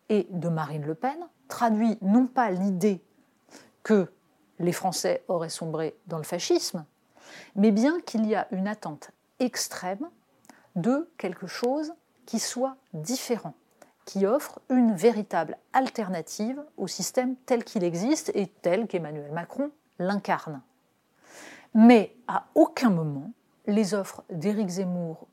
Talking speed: 130 wpm